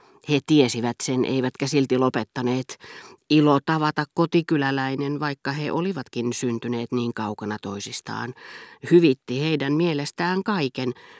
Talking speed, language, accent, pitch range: 105 wpm, Finnish, native, 120-150 Hz